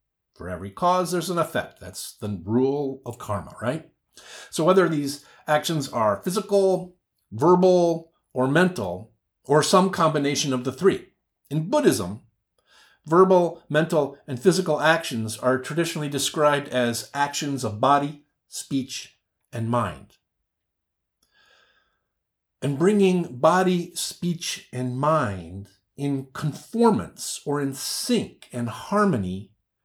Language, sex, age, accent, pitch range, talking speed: English, male, 50-69, American, 125-175 Hz, 115 wpm